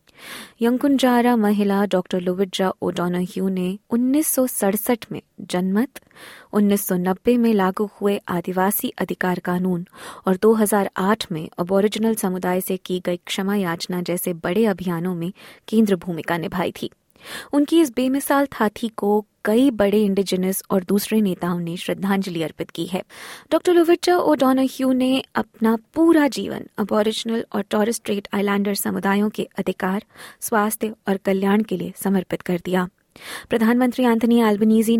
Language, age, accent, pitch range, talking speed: Hindi, 20-39, native, 185-230 Hz, 130 wpm